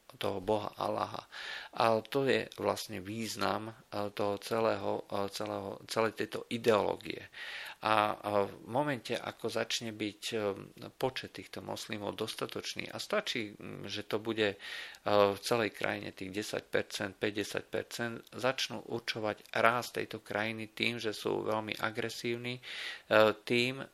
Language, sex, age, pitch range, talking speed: Slovak, male, 50-69, 100-110 Hz, 115 wpm